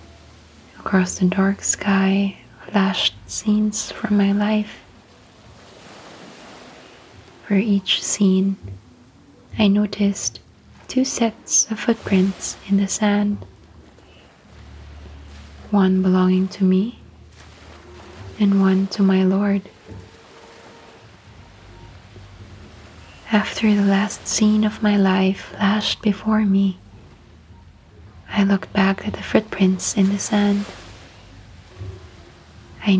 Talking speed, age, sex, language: 90 wpm, 20-39, female, English